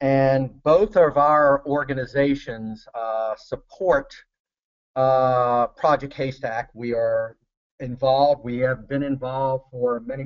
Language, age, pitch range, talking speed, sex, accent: English, 40-59, 130-155 Hz, 110 wpm, male, American